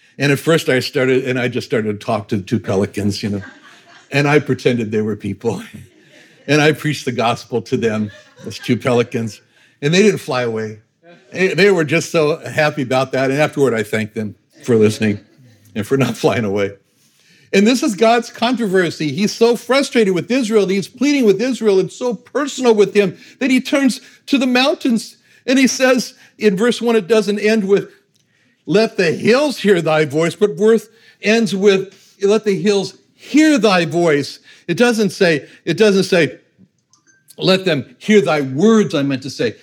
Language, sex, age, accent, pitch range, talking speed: English, male, 60-79, American, 140-220 Hz, 190 wpm